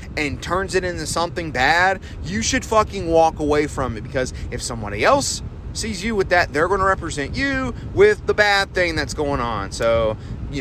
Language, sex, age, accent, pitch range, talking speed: English, male, 30-49, American, 125-205 Hz, 200 wpm